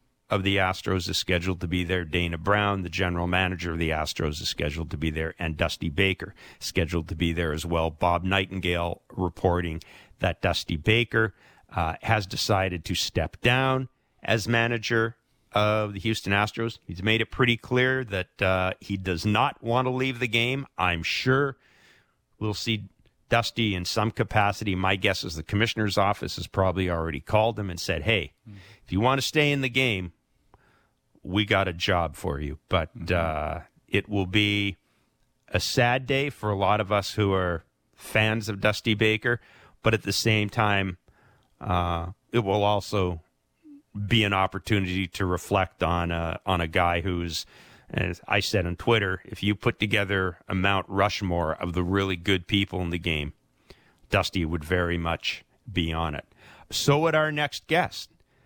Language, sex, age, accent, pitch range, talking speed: English, male, 50-69, American, 90-110 Hz, 175 wpm